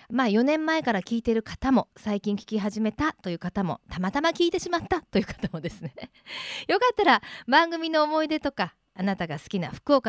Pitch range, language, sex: 185-265 Hz, Japanese, female